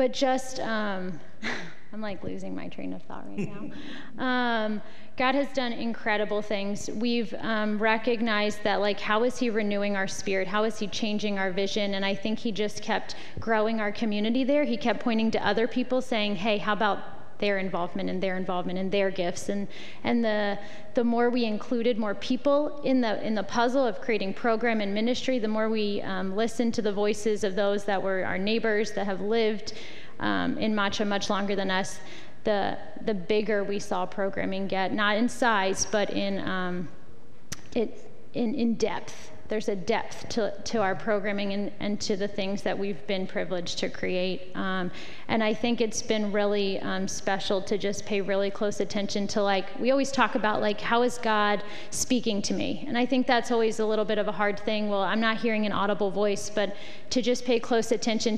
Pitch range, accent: 200-230 Hz, American